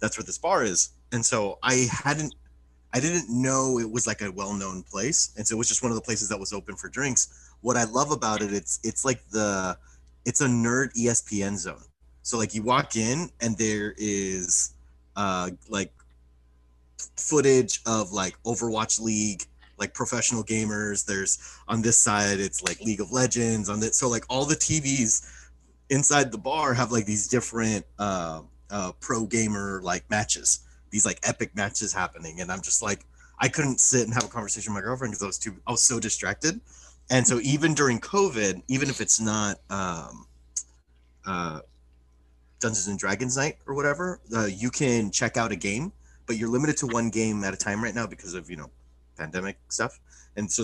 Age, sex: 30-49, male